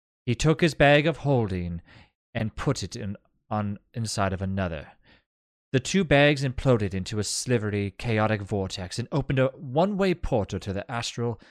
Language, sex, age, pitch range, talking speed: English, male, 30-49, 95-130 Hz, 160 wpm